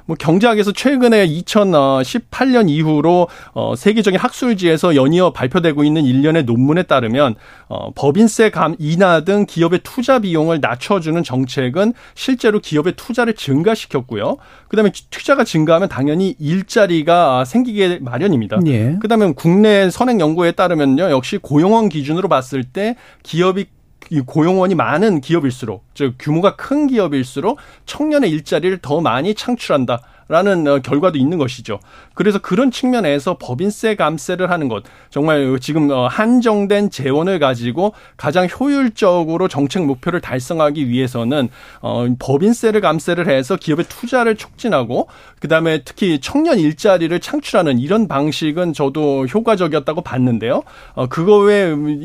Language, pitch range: Korean, 145-205 Hz